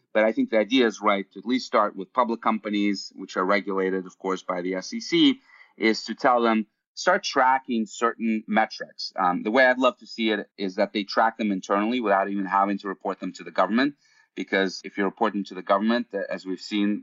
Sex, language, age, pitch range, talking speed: male, English, 30-49, 95-110 Hz, 220 wpm